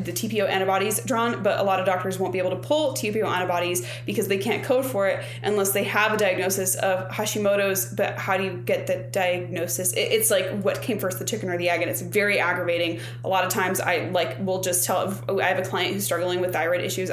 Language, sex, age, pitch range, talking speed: English, female, 20-39, 175-195 Hz, 245 wpm